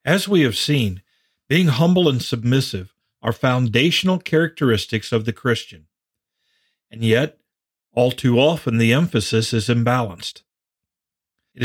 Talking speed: 125 wpm